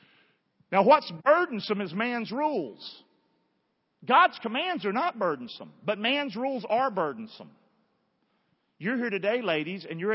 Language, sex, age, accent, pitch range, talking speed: English, male, 40-59, American, 160-220 Hz, 130 wpm